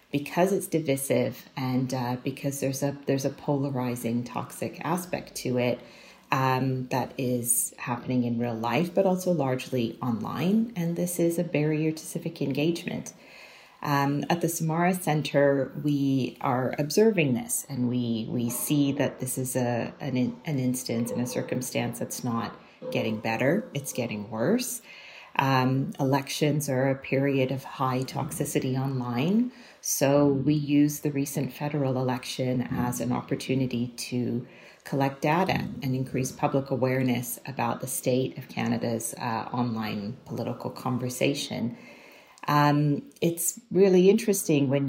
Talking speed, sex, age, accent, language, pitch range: 140 wpm, female, 40-59, American, English, 125-155 Hz